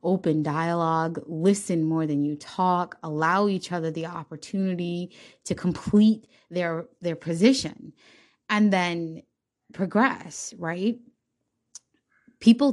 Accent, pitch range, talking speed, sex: American, 155-185 Hz, 105 wpm, female